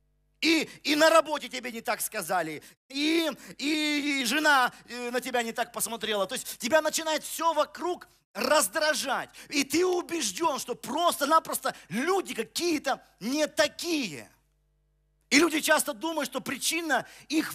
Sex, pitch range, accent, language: male, 205-295 Hz, native, Russian